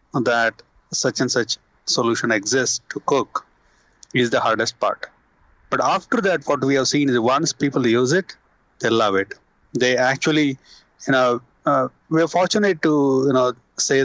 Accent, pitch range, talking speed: Indian, 110-135 Hz, 165 wpm